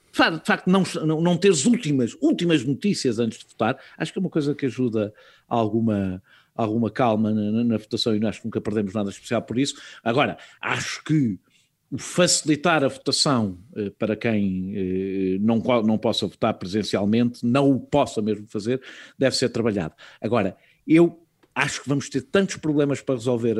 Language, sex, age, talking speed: Portuguese, male, 50-69, 165 wpm